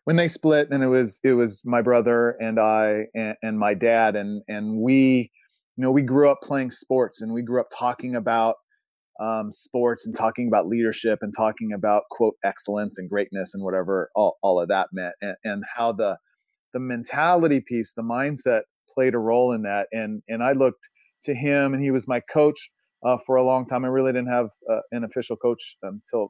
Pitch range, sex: 110-140 Hz, male